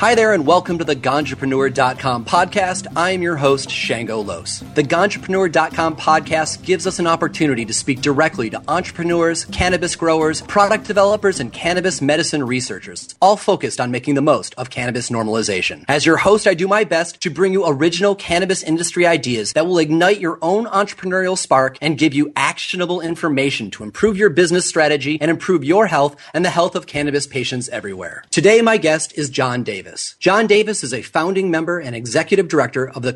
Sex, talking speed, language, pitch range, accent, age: male, 185 wpm, English, 135-180 Hz, American, 30-49